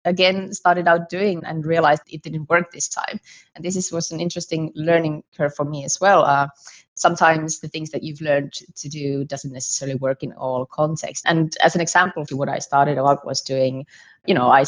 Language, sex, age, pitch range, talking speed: English, female, 20-39, 135-155 Hz, 210 wpm